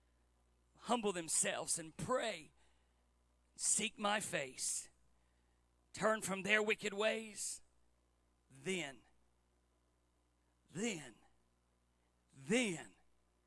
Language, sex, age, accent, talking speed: English, male, 50-69, American, 65 wpm